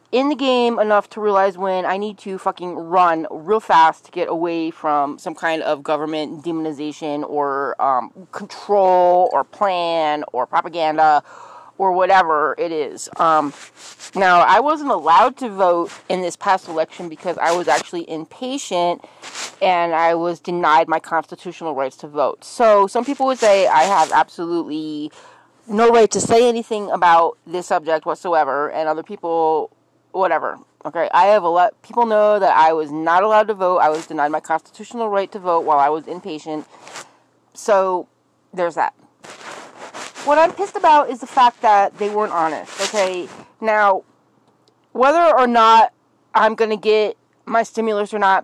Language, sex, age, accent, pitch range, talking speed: English, female, 30-49, American, 165-215 Hz, 165 wpm